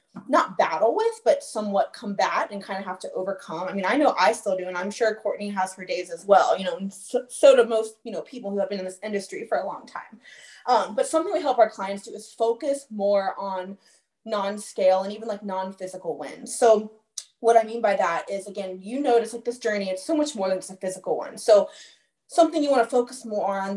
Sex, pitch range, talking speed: female, 195-250 Hz, 240 wpm